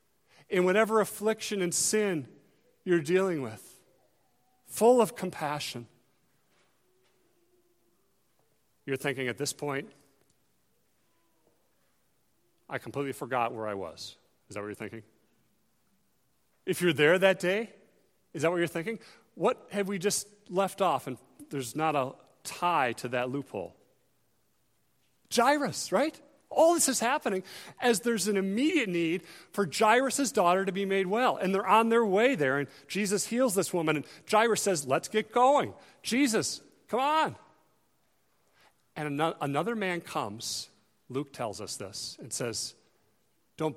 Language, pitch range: English, 135-210 Hz